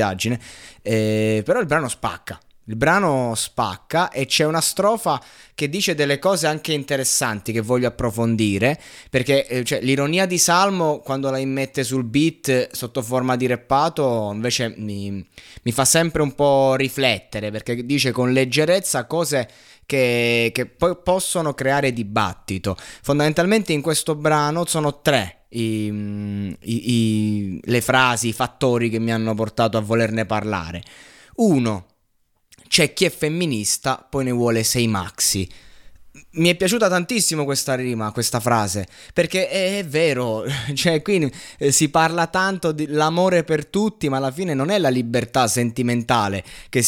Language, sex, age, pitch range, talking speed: Italian, male, 20-39, 115-155 Hz, 145 wpm